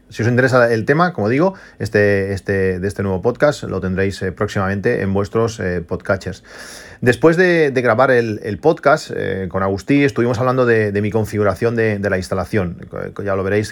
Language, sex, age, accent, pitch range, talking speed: Spanish, male, 30-49, Spanish, 95-120 Hz, 195 wpm